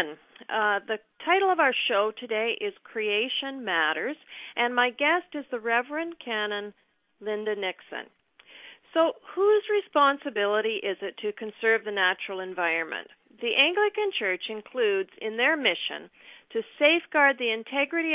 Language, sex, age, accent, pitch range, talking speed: English, female, 50-69, American, 200-275 Hz, 130 wpm